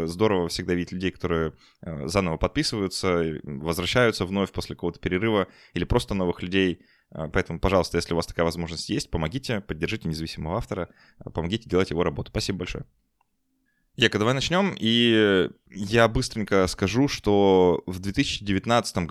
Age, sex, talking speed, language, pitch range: 20-39, male, 140 wpm, Russian, 90-115 Hz